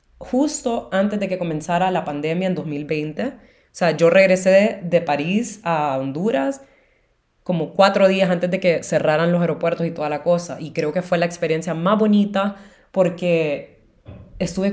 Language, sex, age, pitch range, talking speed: Spanish, female, 20-39, 170-220 Hz, 165 wpm